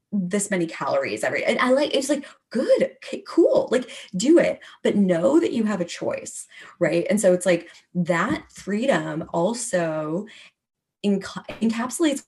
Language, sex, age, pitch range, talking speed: English, female, 20-39, 175-230 Hz, 155 wpm